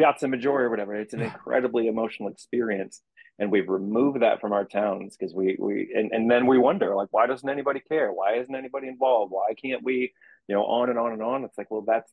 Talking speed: 235 wpm